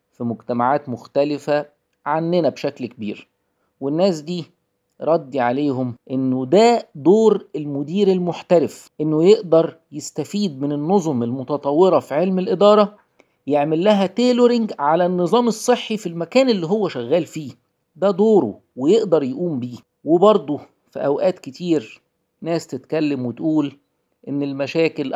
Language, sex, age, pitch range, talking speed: Arabic, male, 50-69, 125-170 Hz, 120 wpm